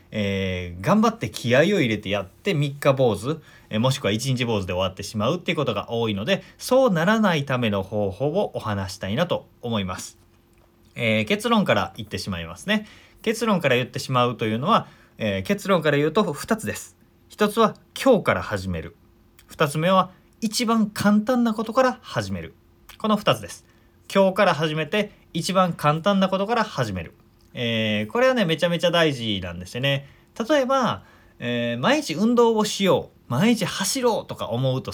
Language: Japanese